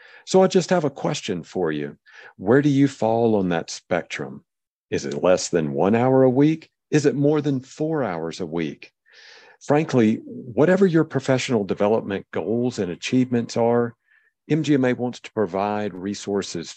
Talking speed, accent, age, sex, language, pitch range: 160 wpm, American, 50-69, male, English, 95-130 Hz